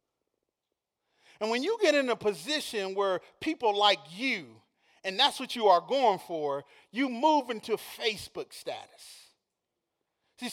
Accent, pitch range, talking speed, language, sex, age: American, 210-310 Hz, 135 wpm, English, male, 30-49